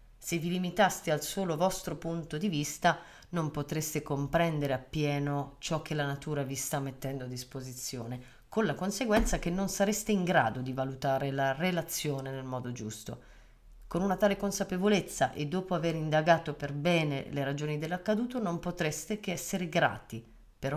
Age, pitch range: 30-49, 130-175 Hz